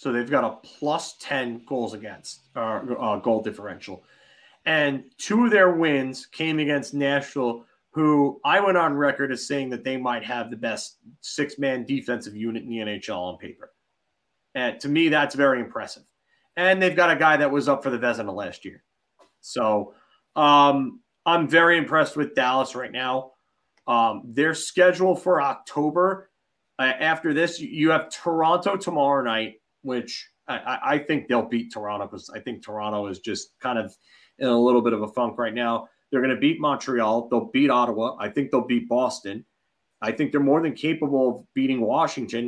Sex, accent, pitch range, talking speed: male, American, 120-160 Hz, 180 wpm